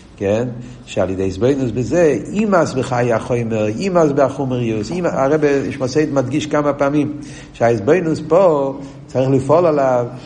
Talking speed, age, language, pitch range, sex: 130 wpm, 60-79, Hebrew, 105-140 Hz, male